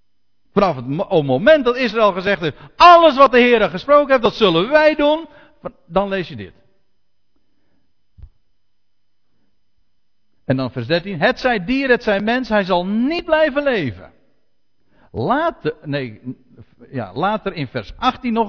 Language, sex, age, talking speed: Dutch, male, 50-69, 145 wpm